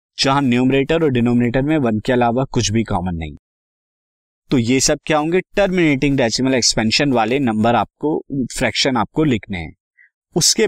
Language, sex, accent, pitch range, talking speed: Hindi, male, native, 115-160 Hz, 155 wpm